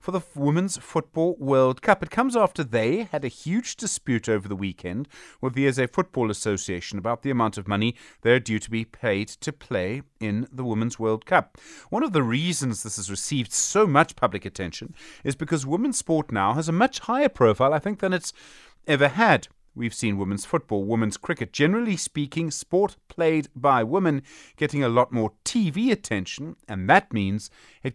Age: 30-49